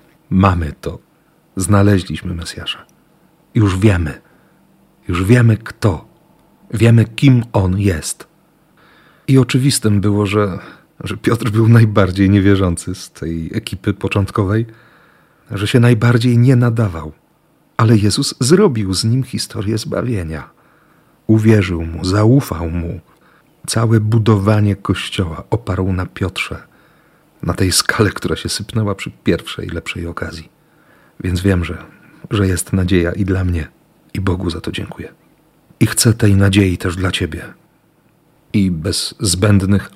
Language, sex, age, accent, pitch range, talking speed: Polish, male, 40-59, native, 95-115 Hz, 125 wpm